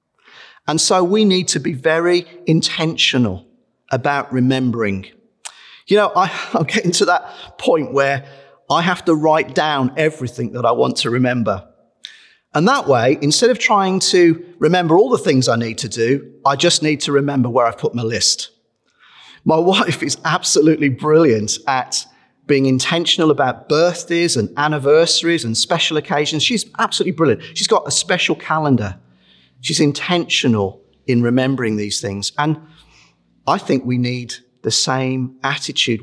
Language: English